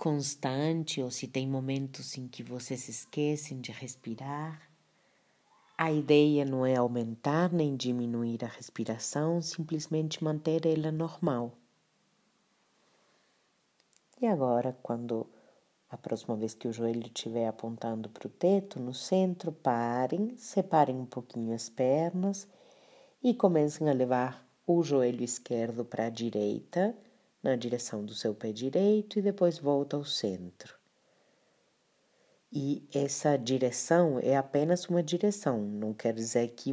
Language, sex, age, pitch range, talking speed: Portuguese, female, 40-59, 120-160 Hz, 125 wpm